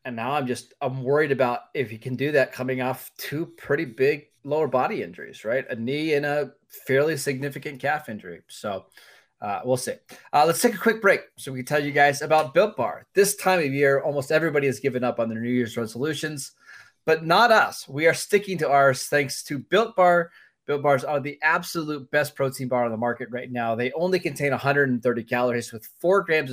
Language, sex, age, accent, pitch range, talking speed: English, male, 20-39, American, 125-155 Hz, 215 wpm